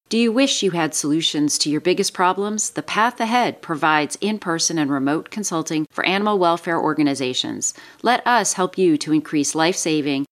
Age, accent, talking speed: 40-59, American, 170 wpm